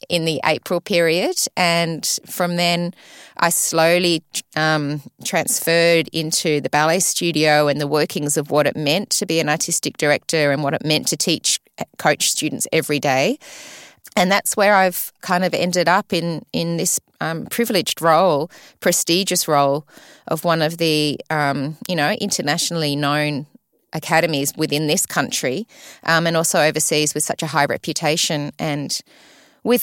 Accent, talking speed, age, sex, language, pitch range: Australian, 155 wpm, 20-39, female, English, 150-175 Hz